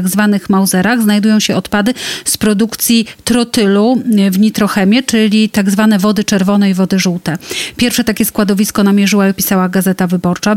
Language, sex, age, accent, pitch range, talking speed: Polish, female, 30-49, native, 195-215 Hz, 150 wpm